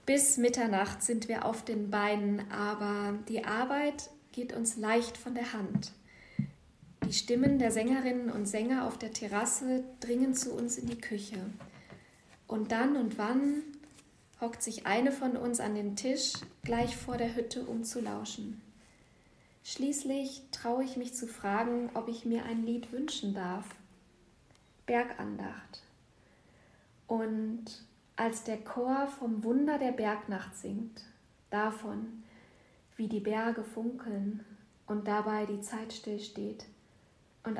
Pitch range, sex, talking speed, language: 210-245 Hz, female, 135 wpm, German